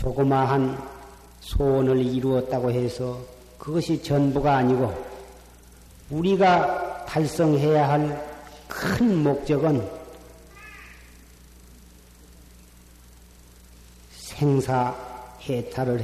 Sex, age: male, 40-59